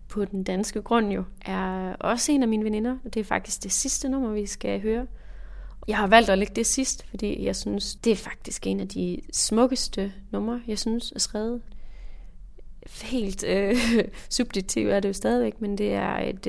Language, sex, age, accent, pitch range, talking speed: Danish, female, 30-49, native, 195-225 Hz, 195 wpm